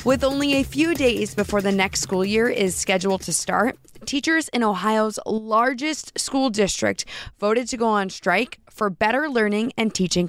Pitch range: 195-255 Hz